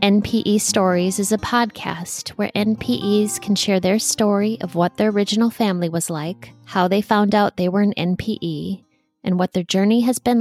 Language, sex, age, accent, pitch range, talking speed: English, female, 20-39, American, 180-225 Hz, 185 wpm